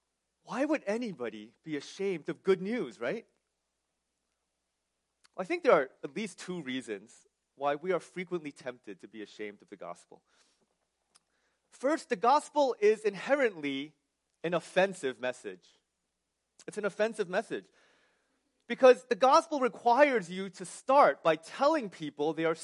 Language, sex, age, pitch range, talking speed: English, male, 30-49, 145-240 Hz, 140 wpm